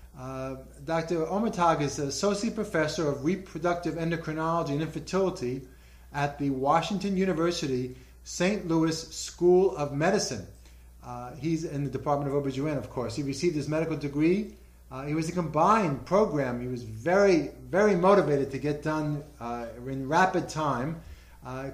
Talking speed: 150 wpm